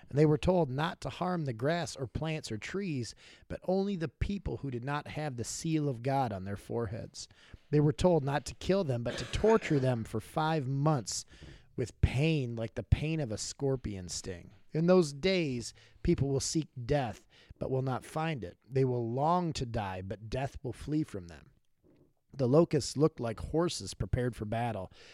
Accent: American